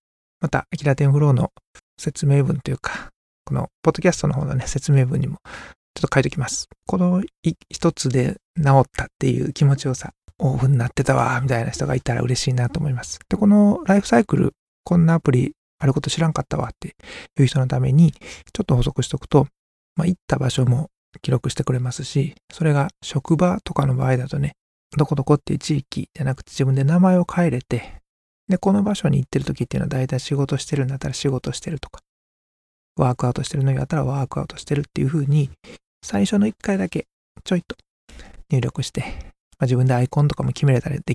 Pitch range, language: 130-165 Hz, Japanese